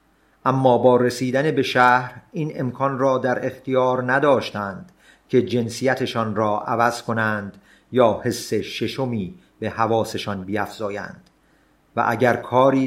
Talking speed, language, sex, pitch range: 115 wpm, Persian, male, 115-130 Hz